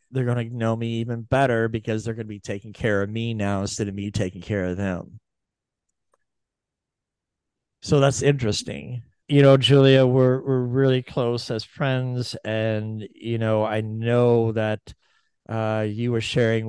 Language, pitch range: English, 105-115 Hz